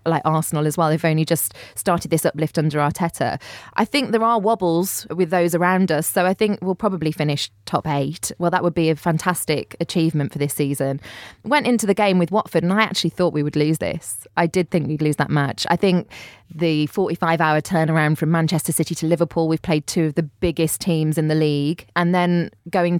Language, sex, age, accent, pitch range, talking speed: English, female, 20-39, British, 150-175 Hz, 220 wpm